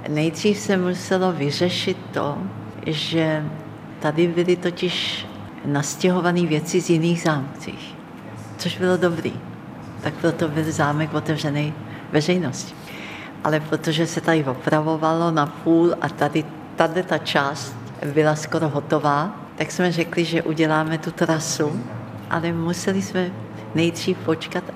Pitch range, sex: 145-180 Hz, female